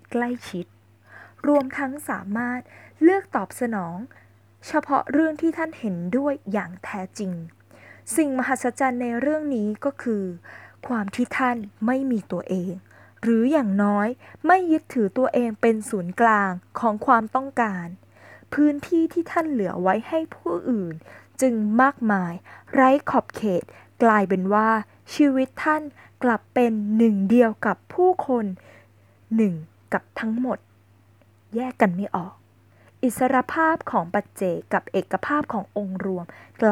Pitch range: 190-260 Hz